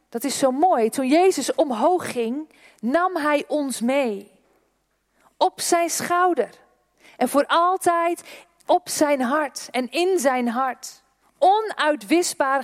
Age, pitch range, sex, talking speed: 40-59, 240-325 Hz, female, 125 wpm